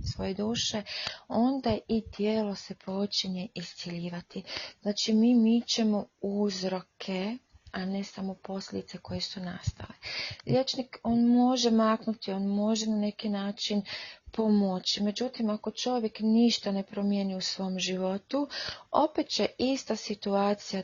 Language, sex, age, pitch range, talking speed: Croatian, female, 30-49, 190-230 Hz, 125 wpm